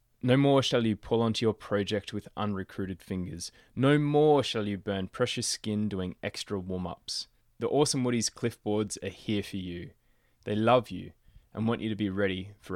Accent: Australian